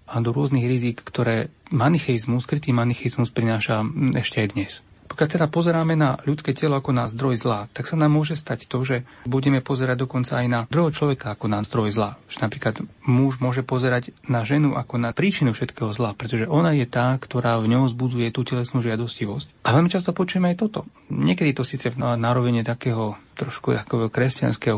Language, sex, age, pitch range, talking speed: Slovak, male, 30-49, 110-135 Hz, 190 wpm